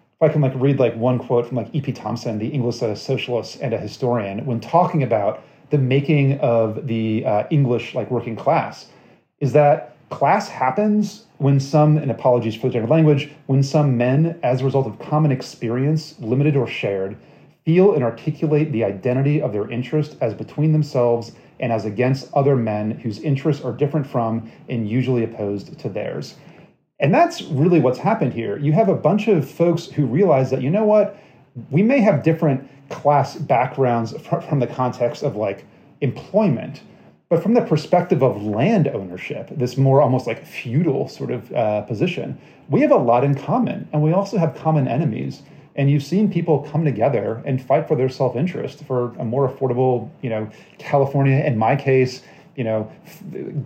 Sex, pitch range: male, 120-155 Hz